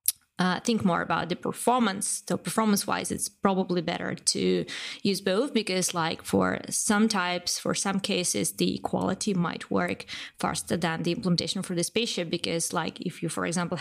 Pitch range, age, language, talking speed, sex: 165-190 Hz, 20-39, English, 170 wpm, female